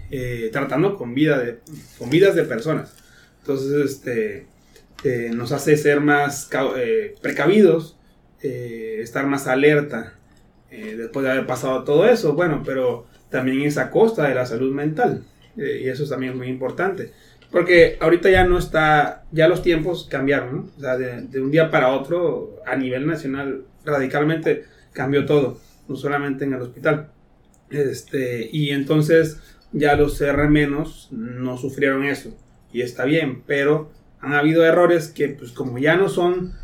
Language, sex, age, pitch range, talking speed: Spanish, male, 30-49, 130-160 Hz, 160 wpm